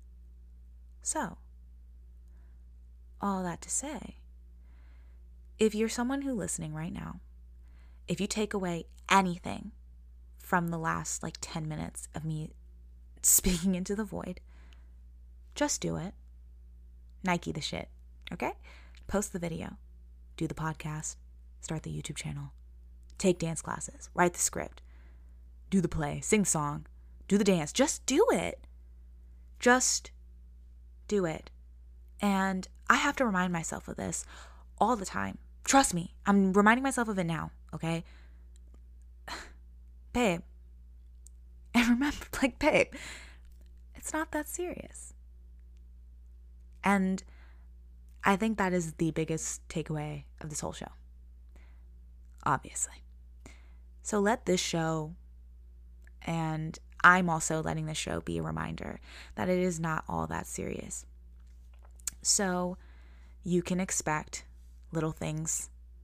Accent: American